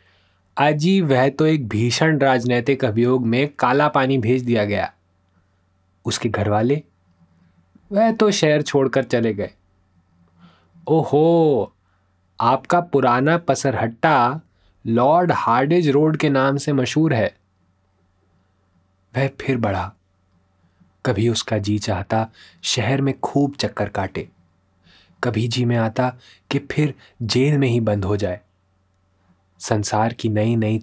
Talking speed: 120 wpm